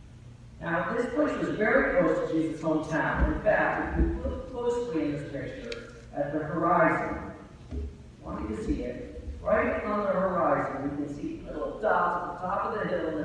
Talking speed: 200 wpm